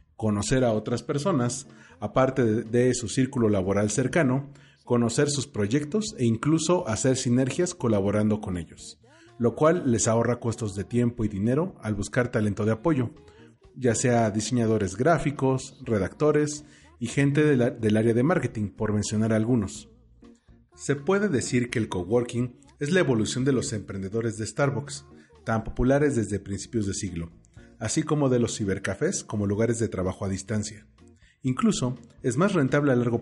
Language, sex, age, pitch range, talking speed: Spanish, male, 40-59, 105-135 Hz, 155 wpm